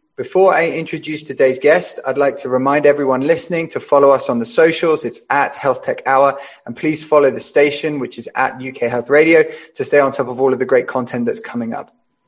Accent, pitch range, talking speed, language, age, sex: British, 135-170 Hz, 225 wpm, English, 20-39, male